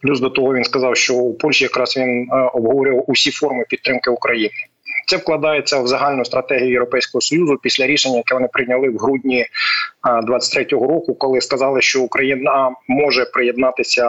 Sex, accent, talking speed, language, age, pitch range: male, native, 160 wpm, Ukrainian, 30-49, 125-145 Hz